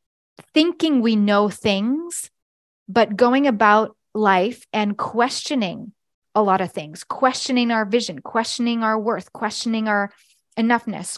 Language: English